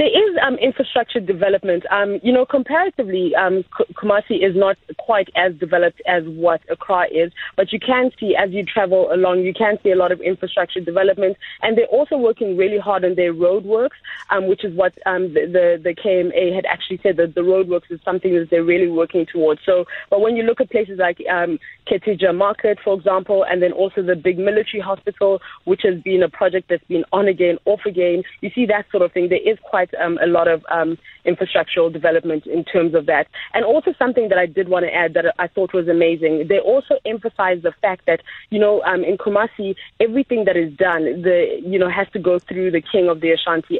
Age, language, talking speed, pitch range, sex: 20-39, English, 215 wpm, 175-210 Hz, female